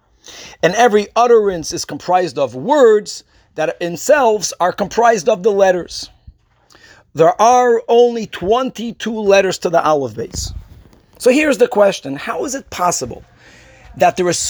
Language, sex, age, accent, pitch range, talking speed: English, male, 50-69, American, 175-265 Hz, 140 wpm